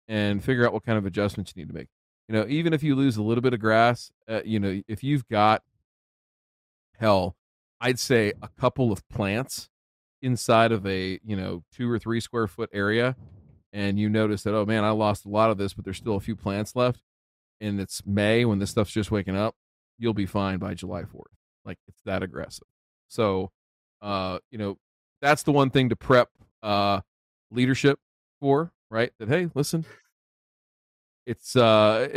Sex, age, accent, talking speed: male, 40-59, American, 190 wpm